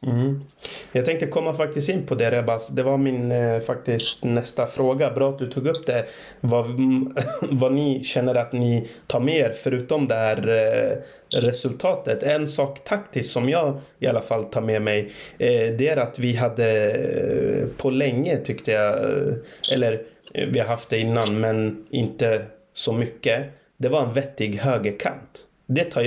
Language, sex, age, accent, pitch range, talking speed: Swedish, male, 20-39, native, 115-135 Hz, 160 wpm